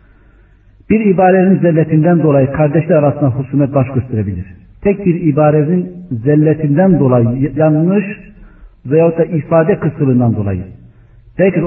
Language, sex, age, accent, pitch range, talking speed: Turkish, male, 50-69, native, 110-150 Hz, 105 wpm